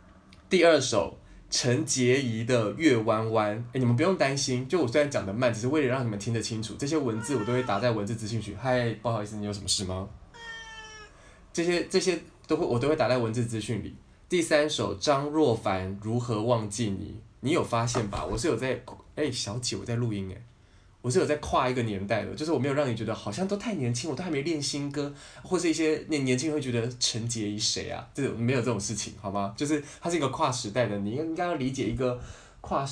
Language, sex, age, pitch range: Chinese, male, 20-39, 105-145 Hz